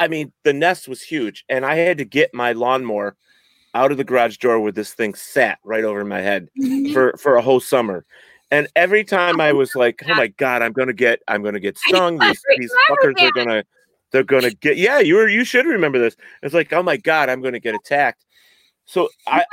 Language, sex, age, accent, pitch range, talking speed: English, male, 40-59, American, 125-200 Hz, 225 wpm